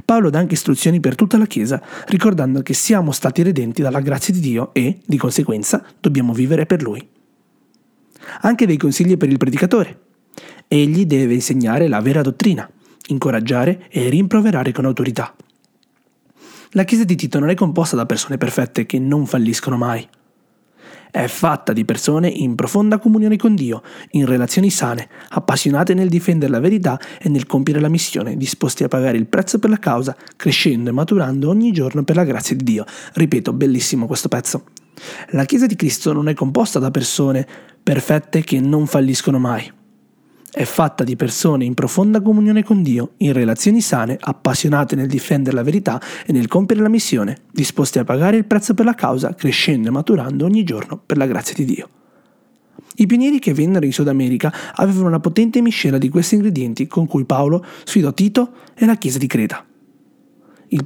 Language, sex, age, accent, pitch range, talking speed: Italian, male, 30-49, native, 135-205 Hz, 175 wpm